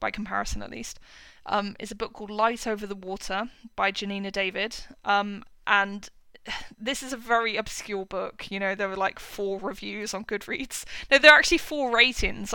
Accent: British